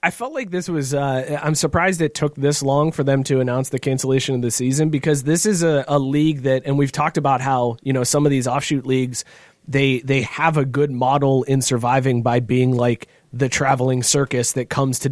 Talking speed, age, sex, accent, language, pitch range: 235 wpm, 30-49, male, American, English, 125-150 Hz